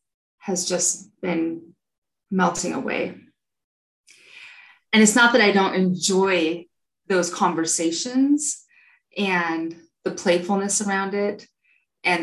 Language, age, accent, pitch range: English, 20-39, American, 170-215 Hz